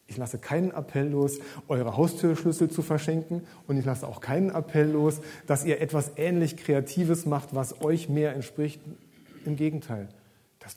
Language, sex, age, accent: German, male, 40-59, German